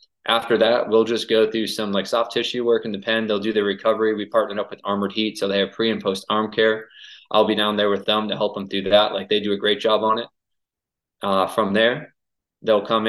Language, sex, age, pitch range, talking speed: English, male, 20-39, 100-110 Hz, 255 wpm